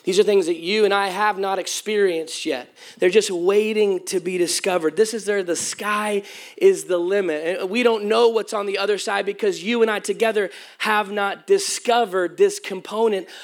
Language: English